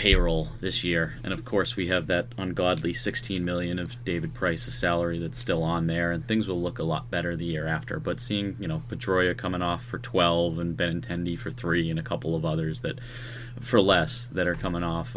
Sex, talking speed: male, 220 wpm